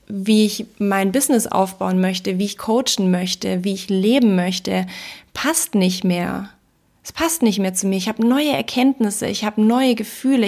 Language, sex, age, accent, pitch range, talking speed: German, female, 30-49, German, 200-230 Hz, 180 wpm